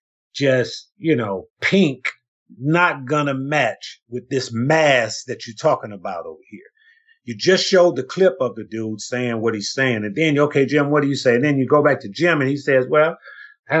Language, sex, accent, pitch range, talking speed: English, male, American, 125-175 Hz, 210 wpm